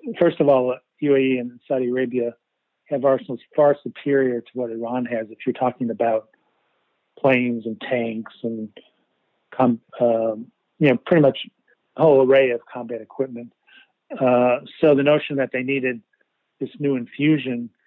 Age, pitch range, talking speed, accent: 40-59, 120-140 Hz, 150 wpm, American